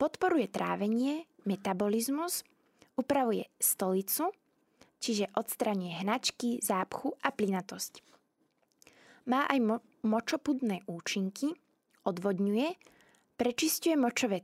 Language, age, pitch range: Slovak, 20-39, 205-275 Hz